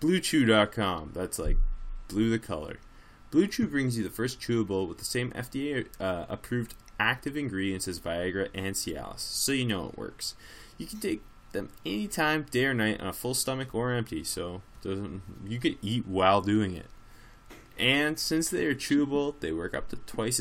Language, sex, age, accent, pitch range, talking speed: English, male, 20-39, American, 95-120 Hz, 180 wpm